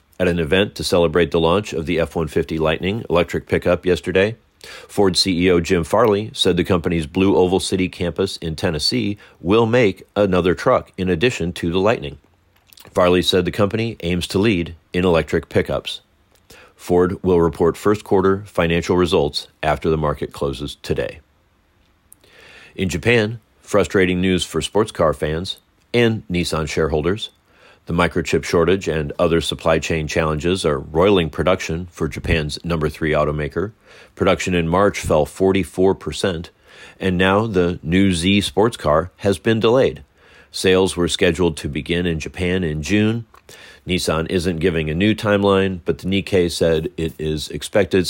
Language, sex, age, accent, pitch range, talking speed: English, male, 40-59, American, 85-95 Hz, 150 wpm